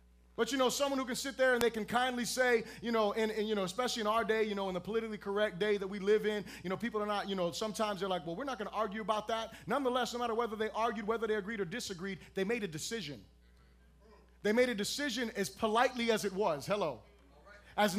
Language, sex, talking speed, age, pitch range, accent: English, male, 260 wpm, 30-49, 195-250 Hz, American